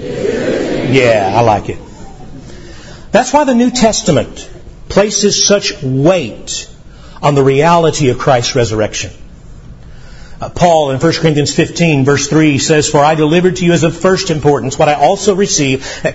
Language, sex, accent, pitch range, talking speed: English, male, American, 145-200 Hz, 150 wpm